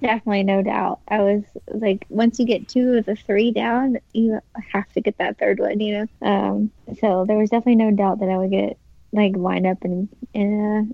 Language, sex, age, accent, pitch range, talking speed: English, female, 20-39, American, 195-220 Hz, 220 wpm